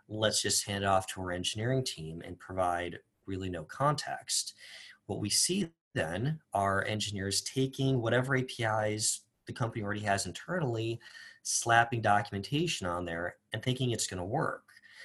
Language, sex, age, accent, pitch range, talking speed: English, male, 30-49, American, 95-130 Hz, 150 wpm